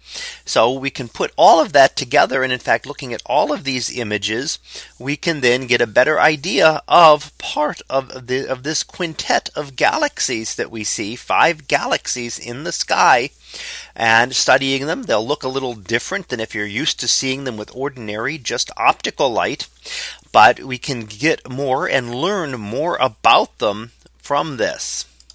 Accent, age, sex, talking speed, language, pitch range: American, 30-49, male, 175 wpm, English, 120-165 Hz